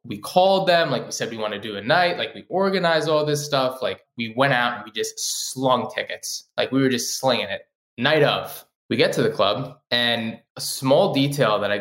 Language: English